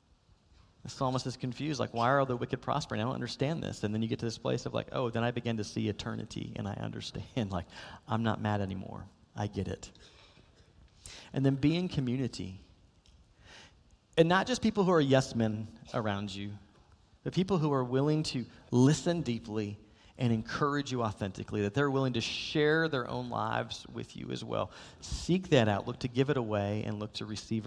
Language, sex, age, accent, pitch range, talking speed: English, male, 40-59, American, 105-135 Hz, 200 wpm